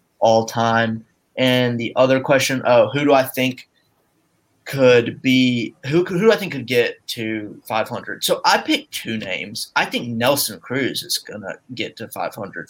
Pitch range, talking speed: 115-145 Hz, 170 wpm